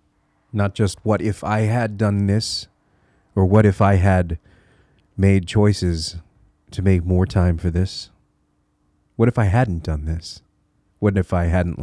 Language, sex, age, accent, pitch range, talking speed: English, male, 30-49, American, 85-110 Hz, 155 wpm